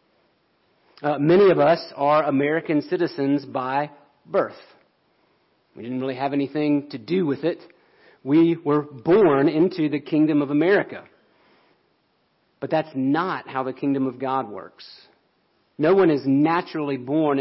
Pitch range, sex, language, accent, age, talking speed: 125-150 Hz, male, English, American, 40-59, 140 wpm